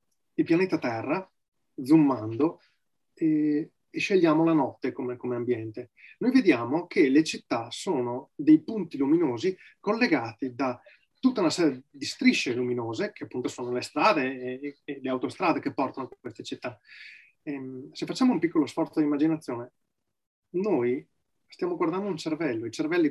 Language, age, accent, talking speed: Italian, 30-49, native, 150 wpm